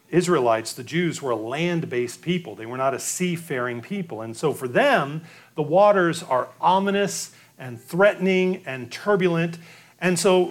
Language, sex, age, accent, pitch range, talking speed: English, male, 40-59, American, 140-180 Hz, 155 wpm